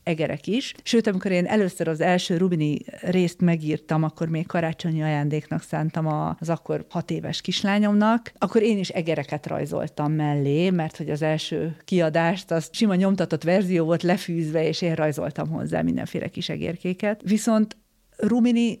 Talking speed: 150 wpm